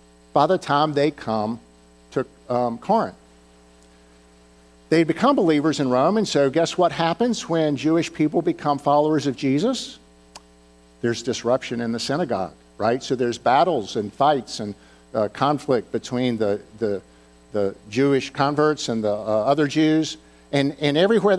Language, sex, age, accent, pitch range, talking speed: English, male, 50-69, American, 105-160 Hz, 150 wpm